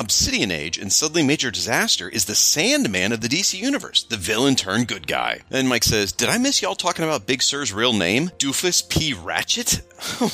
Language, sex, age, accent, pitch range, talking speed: English, male, 30-49, American, 105-140 Hz, 205 wpm